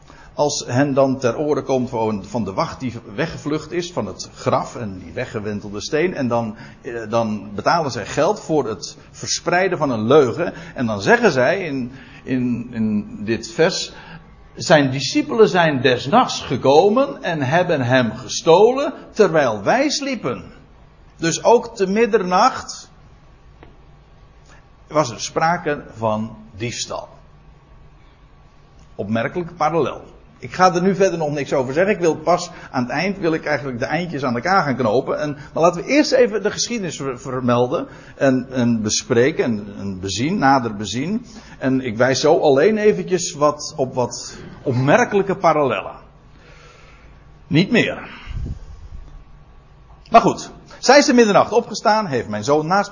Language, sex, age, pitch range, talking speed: Dutch, male, 60-79, 125-180 Hz, 145 wpm